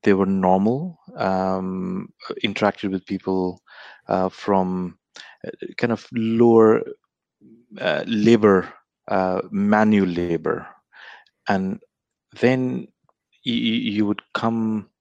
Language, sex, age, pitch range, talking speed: English, male, 30-49, 90-110 Hz, 90 wpm